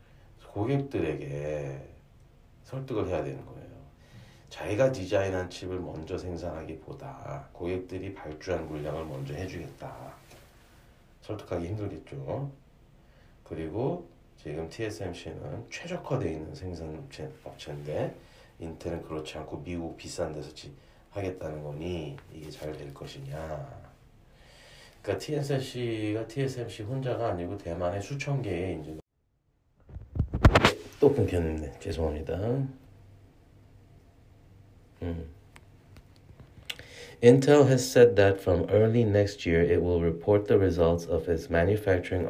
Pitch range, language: 80-105 Hz, Korean